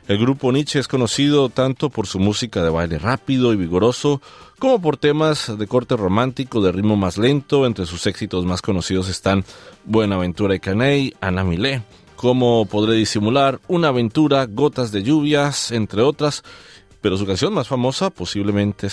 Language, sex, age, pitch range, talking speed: Spanish, male, 40-59, 95-125 Hz, 160 wpm